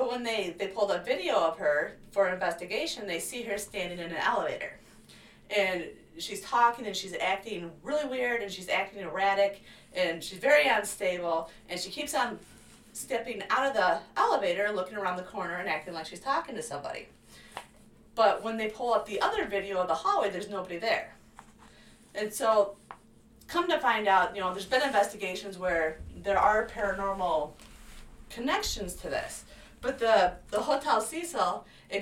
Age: 30-49